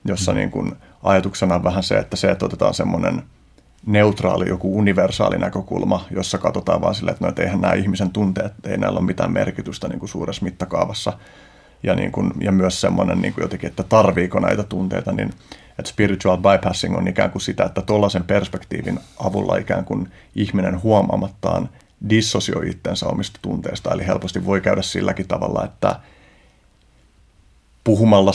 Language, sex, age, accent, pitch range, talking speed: Finnish, male, 30-49, native, 95-100 Hz, 165 wpm